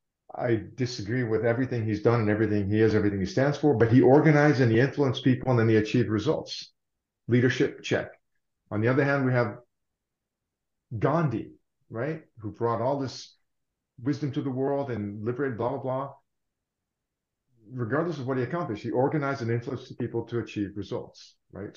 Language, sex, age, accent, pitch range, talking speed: English, male, 50-69, American, 100-130 Hz, 175 wpm